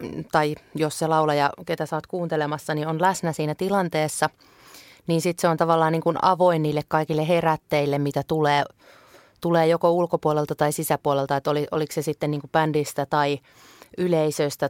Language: Finnish